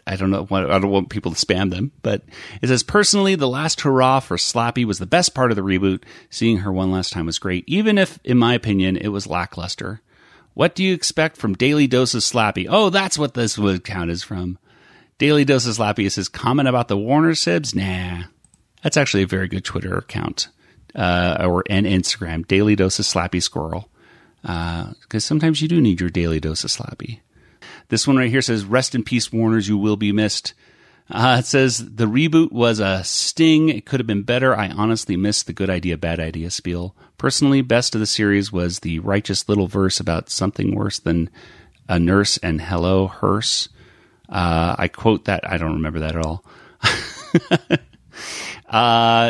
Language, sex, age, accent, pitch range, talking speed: English, male, 30-49, American, 90-125 Hz, 195 wpm